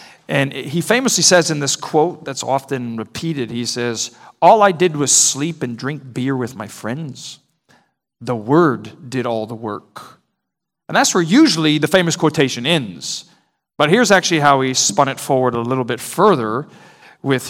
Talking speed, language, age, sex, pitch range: 170 wpm, English, 40-59, male, 125-170 Hz